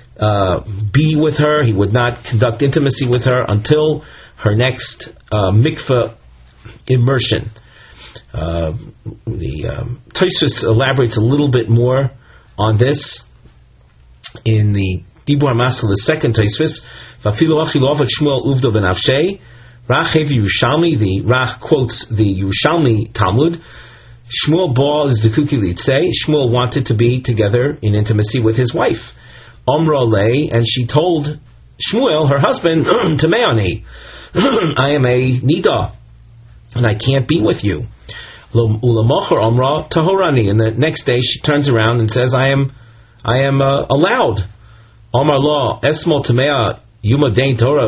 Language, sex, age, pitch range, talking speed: English, male, 40-59, 110-145 Hz, 110 wpm